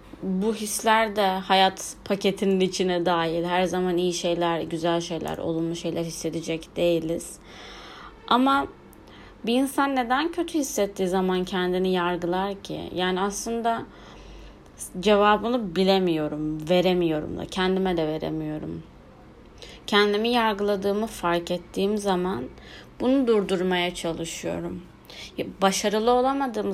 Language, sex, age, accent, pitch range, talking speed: Turkish, female, 30-49, native, 175-205 Hz, 105 wpm